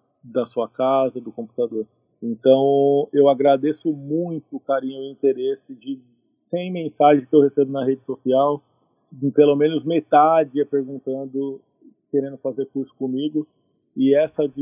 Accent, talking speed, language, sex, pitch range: Brazilian, 140 wpm, Portuguese, male, 140-175 Hz